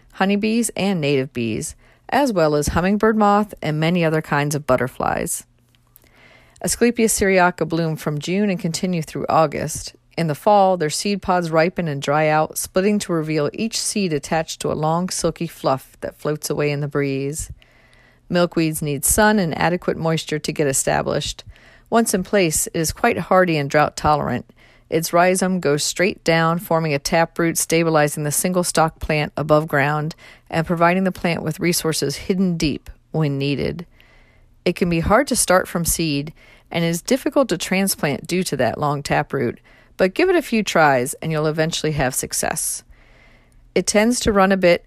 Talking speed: 175 wpm